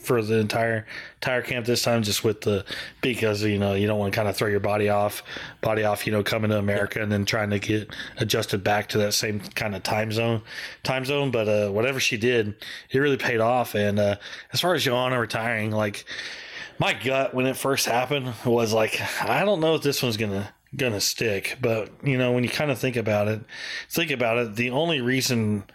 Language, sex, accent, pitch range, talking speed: English, male, American, 110-130 Hz, 225 wpm